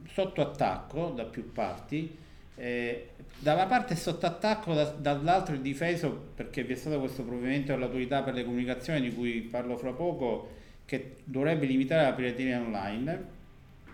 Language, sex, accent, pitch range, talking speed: Italian, male, native, 125-165 Hz, 155 wpm